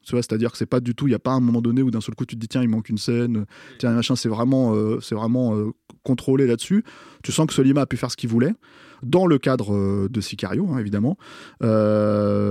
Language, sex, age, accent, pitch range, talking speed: French, male, 20-39, French, 105-125 Hz, 275 wpm